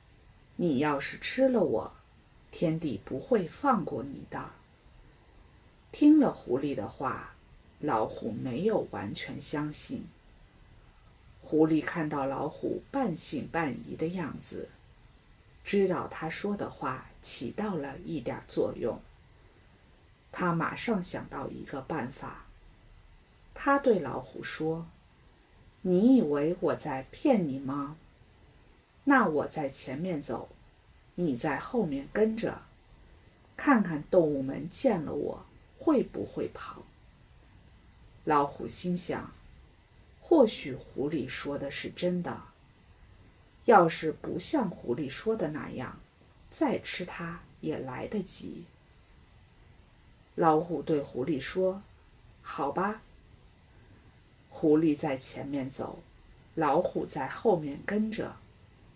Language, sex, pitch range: English, female, 135-185 Hz